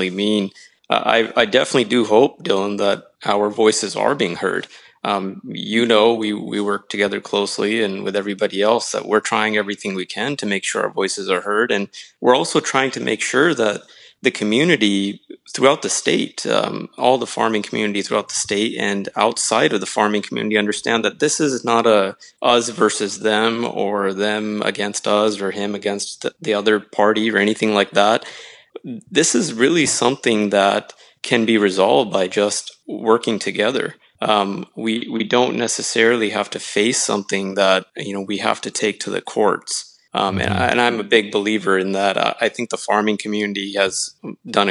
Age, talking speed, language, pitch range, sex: 20-39, 185 wpm, English, 100-110 Hz, male